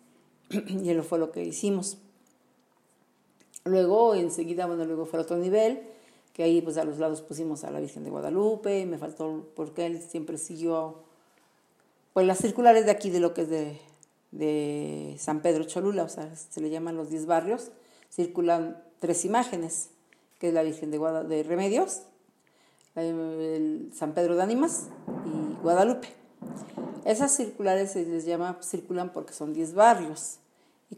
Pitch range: 160-190 Hz